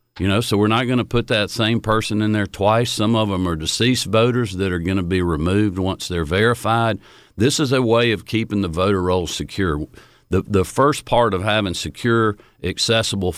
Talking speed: 210 wpm